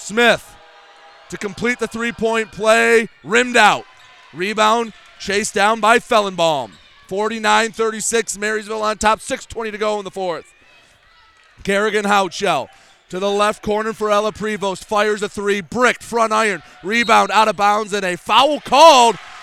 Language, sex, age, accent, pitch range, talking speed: English, male, 30-49, American, 205-235 Hz, 140 wpm